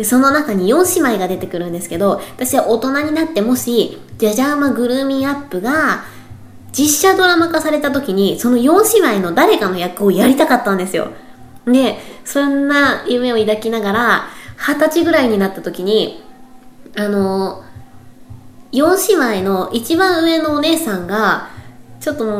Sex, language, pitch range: female, Japanese, 190-285 Hz